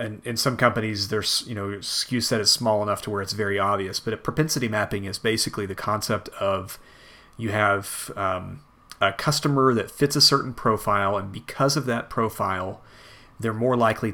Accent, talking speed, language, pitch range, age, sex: American, 185 wpm, English, 105-125 Hz, 30-49, male